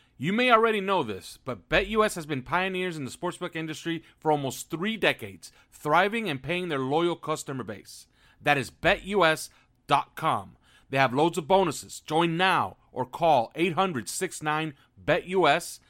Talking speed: 145 wpm